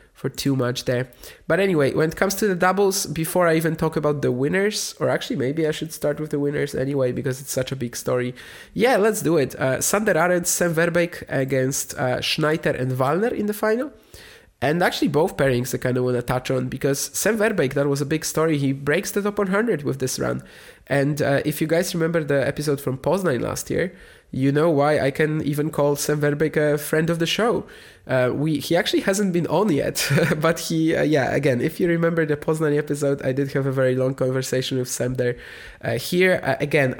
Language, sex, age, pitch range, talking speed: English, male, 20-39, 130-160 Hz, 220 wpm